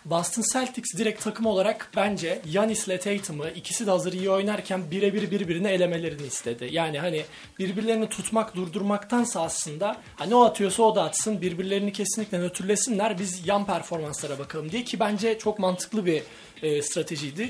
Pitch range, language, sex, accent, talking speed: 165-210 Hz, Turkish, male, native, 150 wpm